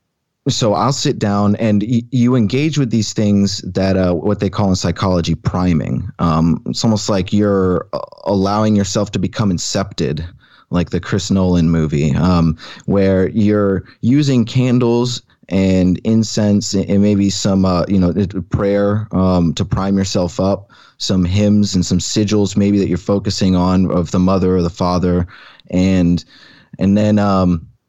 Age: 20-39